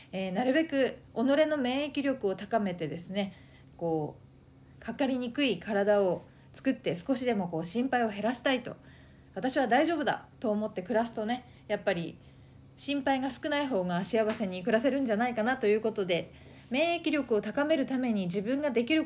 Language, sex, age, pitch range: Japanese, female, 40-59, 195-255 Hz